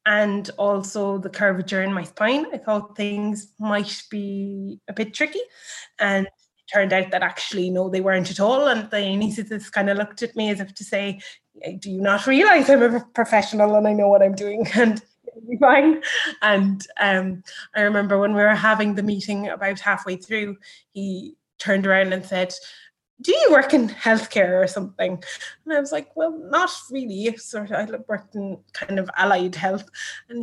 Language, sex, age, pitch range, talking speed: English, female, 20-39, 195-240 Hz, 190 wpm